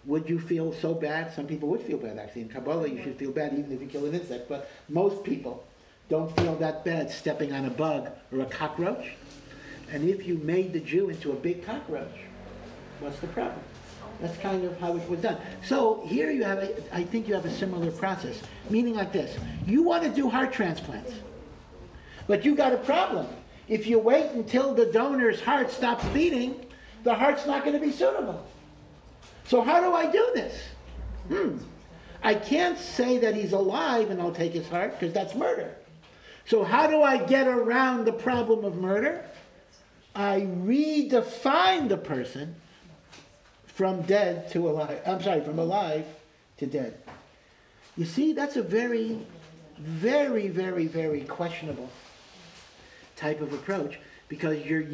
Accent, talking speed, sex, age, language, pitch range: American, 175 wpm, male, 60-79, English, 160-240 Hz